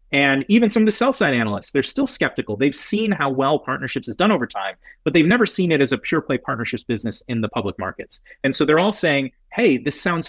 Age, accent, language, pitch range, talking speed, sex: 30-49, American, English, 120-165 Hz, 250 wpm, male